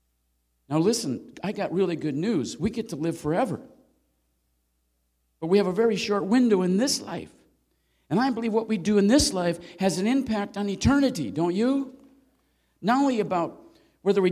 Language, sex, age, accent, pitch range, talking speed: English, male, 50-69, American, 200-290 Hz, 180 wpm